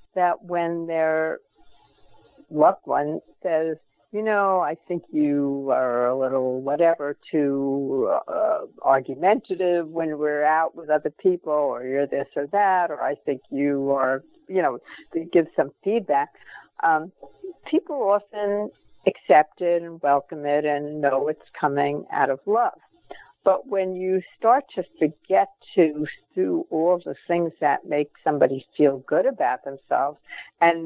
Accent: American